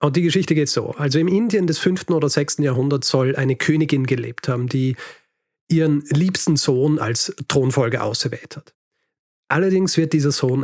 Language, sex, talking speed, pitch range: German, male, 170 wpm, 130-160 Hz